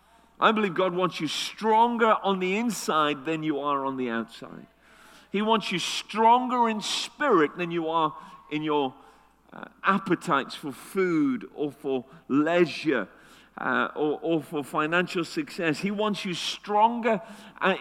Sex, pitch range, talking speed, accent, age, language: male, 140-200 Hz, 150 wpm, British, 40-59, English